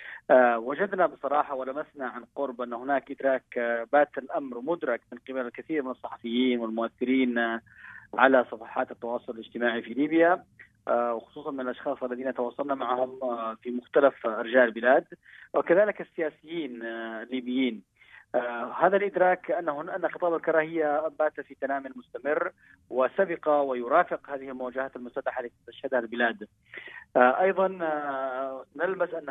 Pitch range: 120-145 Hz